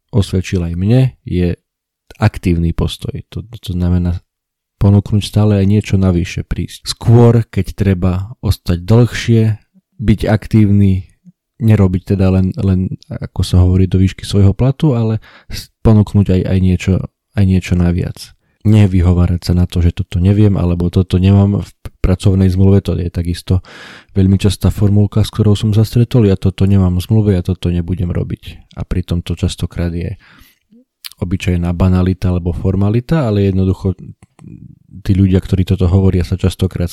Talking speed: 150 wpm